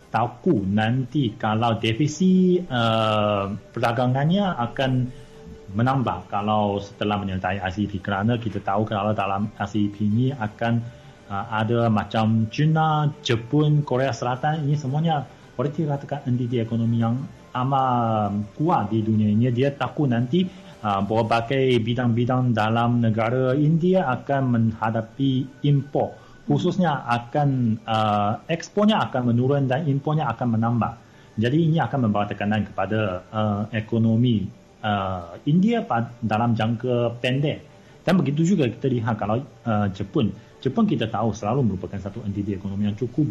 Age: 30-49